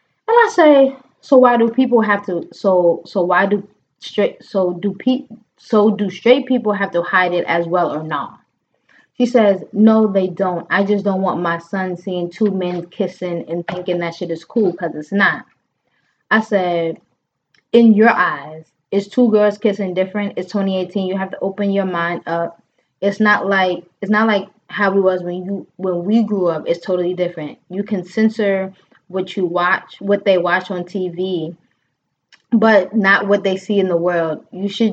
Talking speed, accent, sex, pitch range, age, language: 190 wpm, American, female, 175-205 Hz, 20-39, English